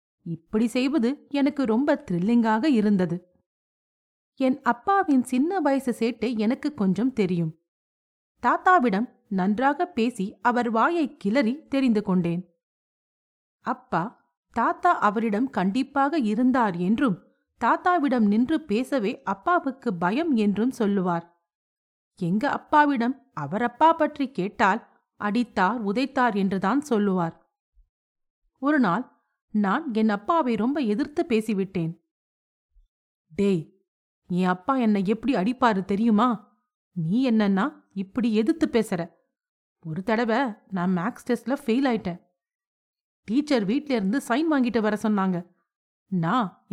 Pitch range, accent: 190-265 Hz, native